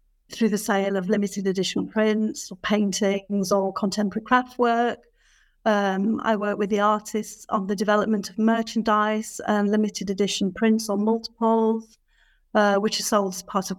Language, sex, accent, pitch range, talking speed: English, female, British, 205-235 Hz, 160 wpm